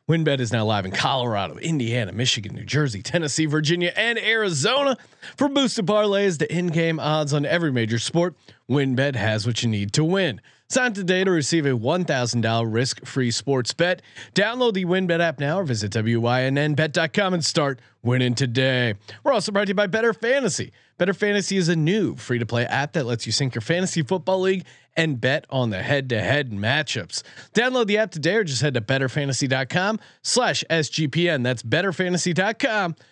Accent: American